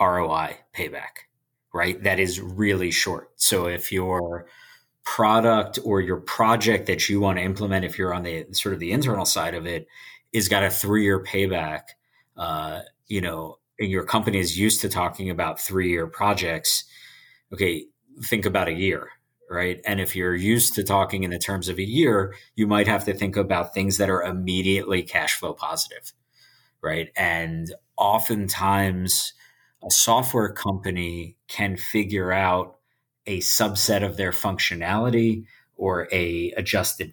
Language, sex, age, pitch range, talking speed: English, male, 30-49, 90-100 Hz, 155 wpm